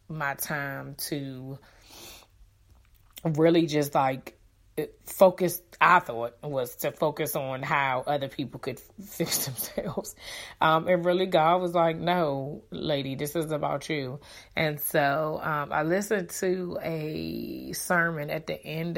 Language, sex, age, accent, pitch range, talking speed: English, female, 20-39, American, 135-165 Hz, 135 wpm